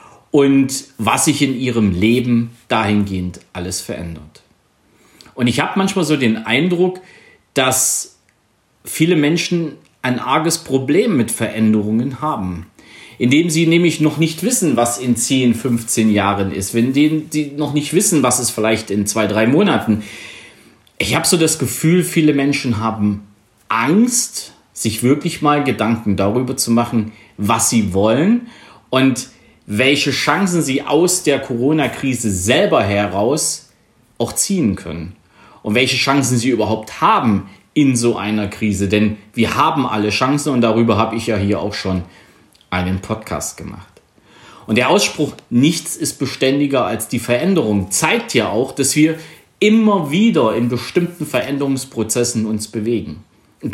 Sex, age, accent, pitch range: male, 40-59, German, 110-150 Hz